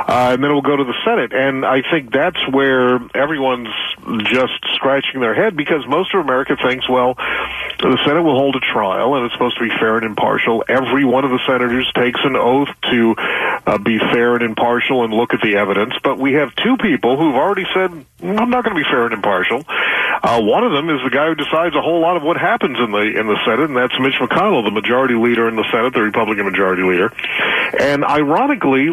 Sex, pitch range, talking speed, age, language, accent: male, 120-145 Hz, 225 wpm, 40-59, English, American